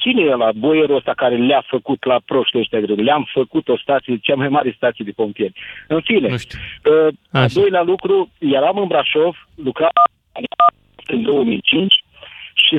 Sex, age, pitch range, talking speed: male, 50-69, 145-200 Hz, 155 wpm